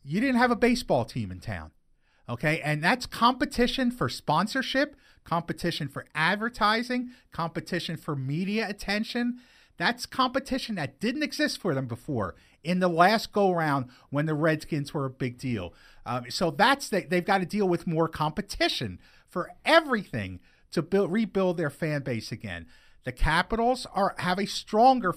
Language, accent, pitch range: English, American, 155-235 Hz